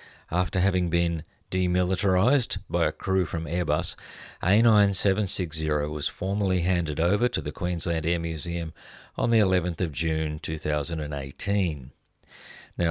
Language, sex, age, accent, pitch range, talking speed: English, male, 50-69, Australian, 80-95 Hz, 120 wpm